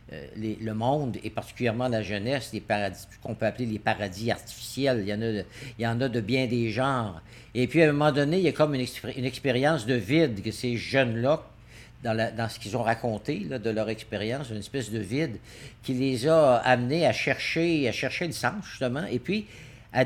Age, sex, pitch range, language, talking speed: 60-79, male, 115-150 Hz, French, 230 wpm